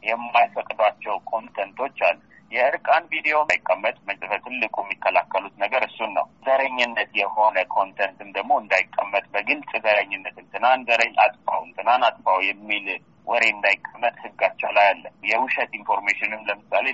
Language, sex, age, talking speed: Amharic, male, 40-59, 115 wpm